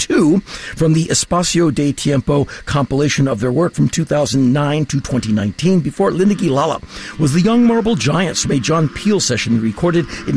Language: English